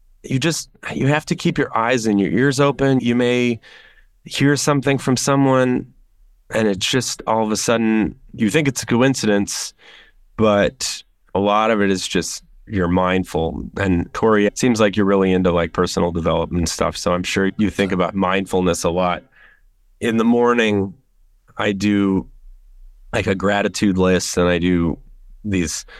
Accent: American